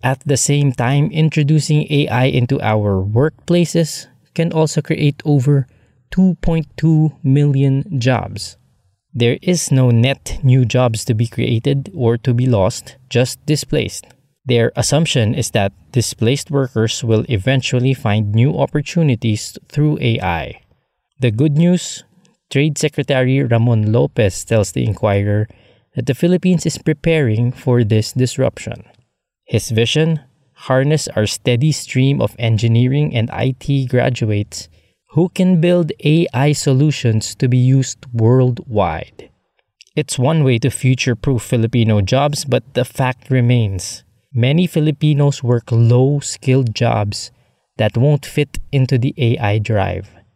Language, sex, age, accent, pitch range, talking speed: English, male, 20-39, Filipino, 115-145 Hz, 125 wpm